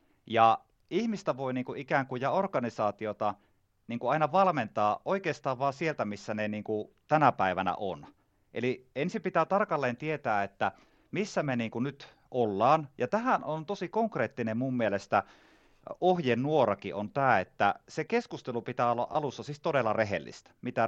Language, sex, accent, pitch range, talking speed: Finnish, male, native, 110-155 Hz, 150 wpm